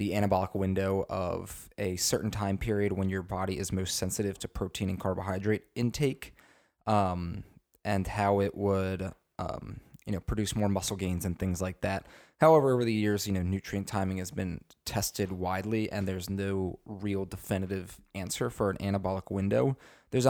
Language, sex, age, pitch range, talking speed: English, male, 20-39, 95-110 Hz, 170 wpm